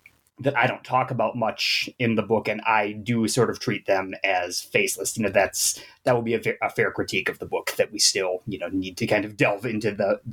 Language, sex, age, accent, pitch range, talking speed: English, male, 30-49, American, 100-125 Hz, 250 wpm